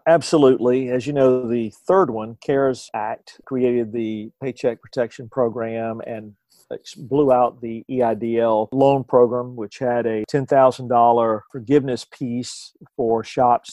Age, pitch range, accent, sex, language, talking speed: 50-69, 120-150 Hz, American, male, English, 125 wpm